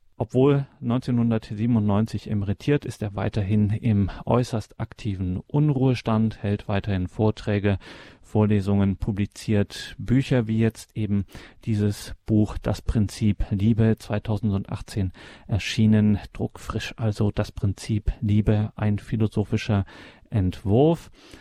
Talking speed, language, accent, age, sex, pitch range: 95 wpm, German, German, 40-59, male, 105-120 Hz